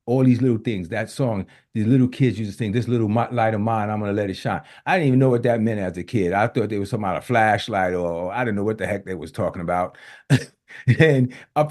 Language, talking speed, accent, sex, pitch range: English, 270 wpm, American, male, 95-125 Hz